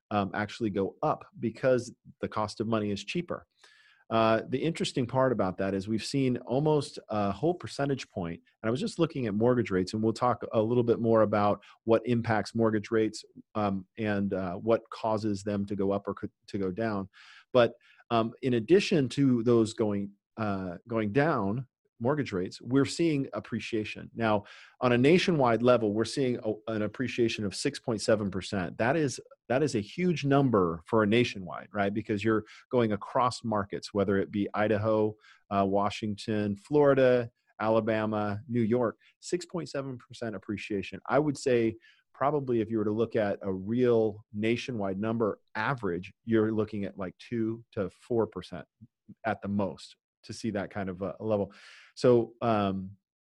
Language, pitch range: English, 105-125 Hz